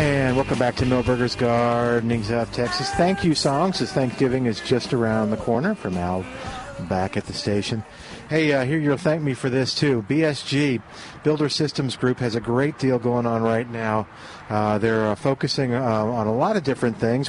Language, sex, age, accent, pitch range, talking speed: English, male, 50-69, American, 120-140 Hz, 195 wpm